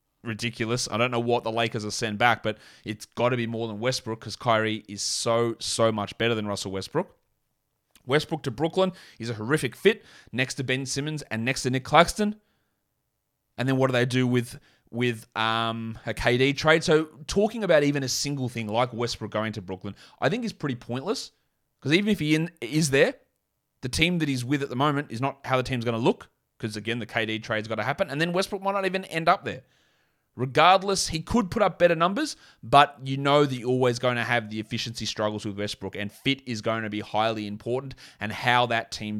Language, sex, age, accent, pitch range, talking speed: English, male, 30-49, Australian, 110-145 Hz, 225 wpm